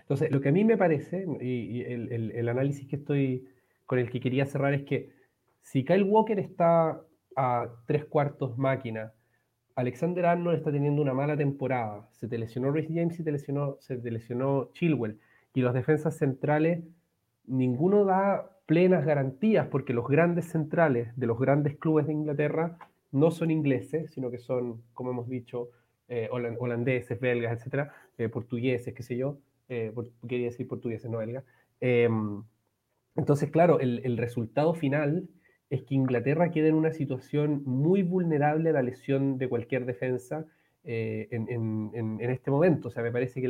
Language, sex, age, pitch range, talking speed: Spanish, male, 30-49, 125-155 Hz, 175 wpm